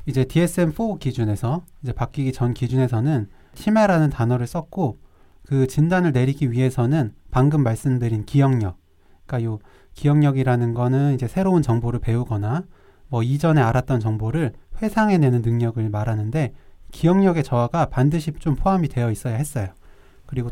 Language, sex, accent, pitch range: Korean, male, native, 115-150 Hz